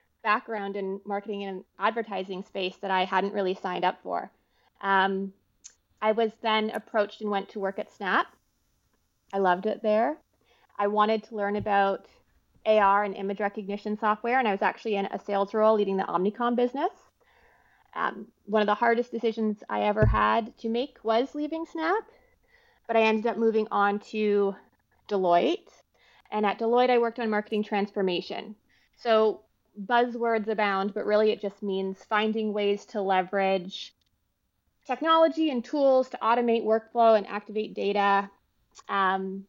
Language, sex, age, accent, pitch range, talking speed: English, female, 20-39, American, 200-235 Hz, 155 wpm